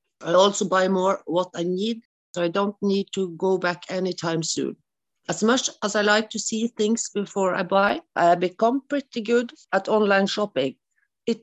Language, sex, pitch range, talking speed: English, female, 175-225 Hz, 190 wpm